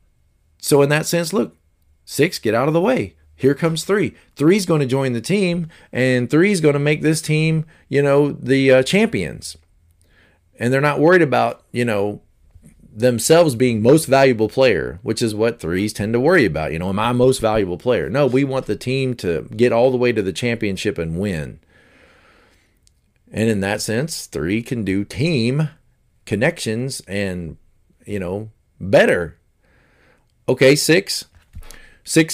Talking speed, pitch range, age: 165 wpm, 95-145 Hz, 40-59